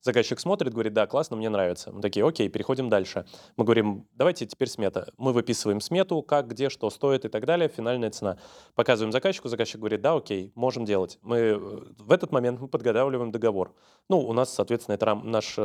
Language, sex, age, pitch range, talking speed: Russian, male, 20-39, 110-140 Hz, 190 wpm